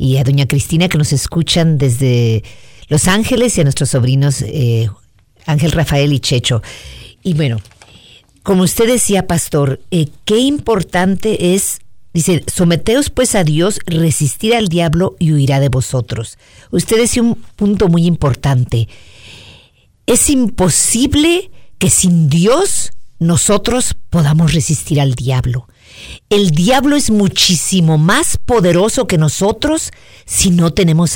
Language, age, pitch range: Spanish, 50-69, 140-215 Hz